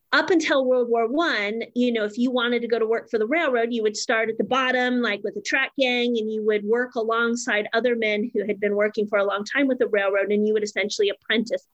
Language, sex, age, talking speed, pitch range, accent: English, female, 30-49, 260 wpm, 220-260 Hz, American